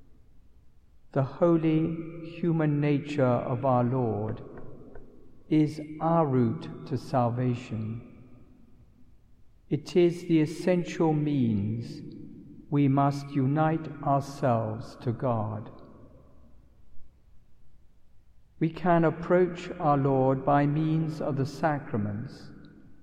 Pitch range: 115-160 Hz